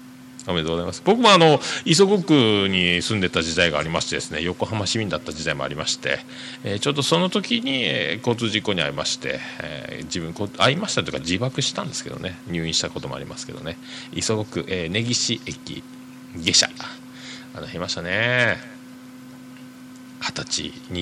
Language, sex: Japanese, male